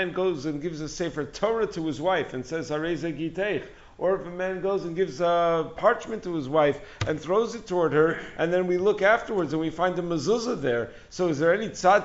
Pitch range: 150-185 Hz